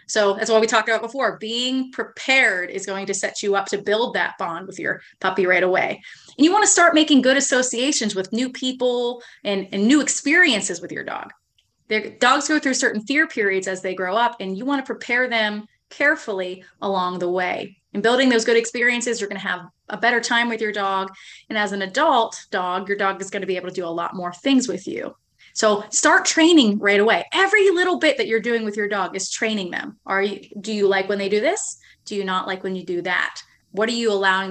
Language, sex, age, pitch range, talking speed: English, female, 20-39, 195-255 Hz, 235 wpm